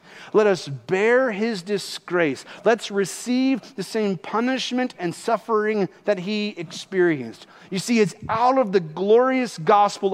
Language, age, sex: English, 40-59, male